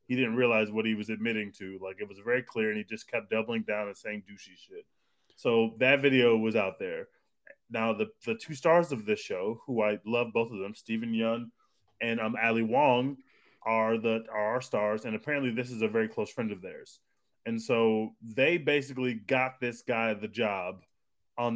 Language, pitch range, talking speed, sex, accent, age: English, 110-135 Hz, 205 wpm, male, American, 20-39